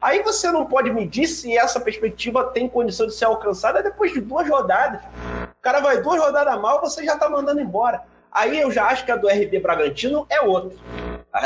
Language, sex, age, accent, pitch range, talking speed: Portuguese, male, 30-49, Brazilian, 180-265 Hz, 215 wpm